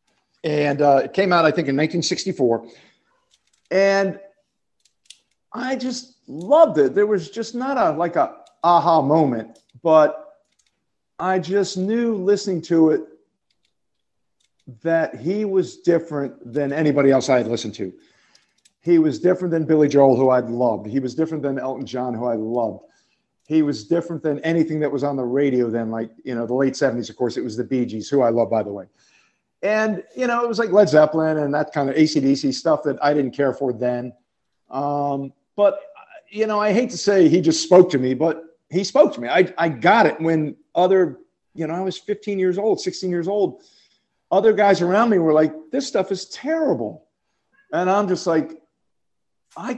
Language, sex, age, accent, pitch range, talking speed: English, male, 50-69, American, 145-210 Hz, 190 wpm